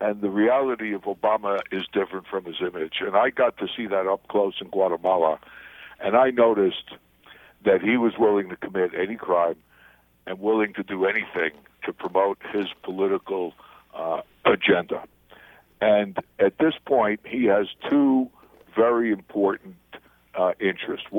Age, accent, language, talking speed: 60-79, American, English, 150 wpm